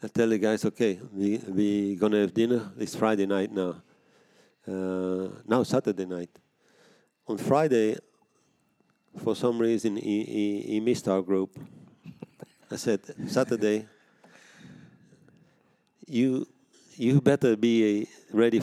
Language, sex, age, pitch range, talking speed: English, male, 50-69, 100-115 Hz, 120 wpm